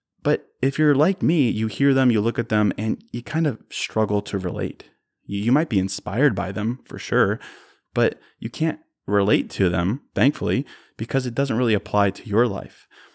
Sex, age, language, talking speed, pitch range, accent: male, 20-39, English, 190 wpm, 95-115 Hz, American